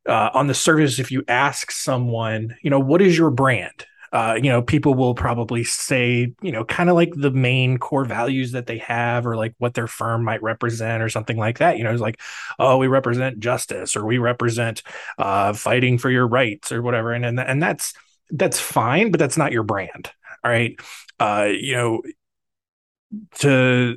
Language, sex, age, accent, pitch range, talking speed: English, male, 20-39, American, 115-135 Hz, 195 wpm